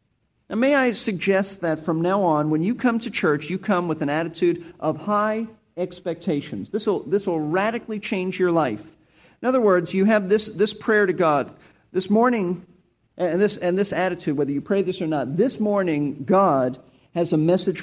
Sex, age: male, 50-69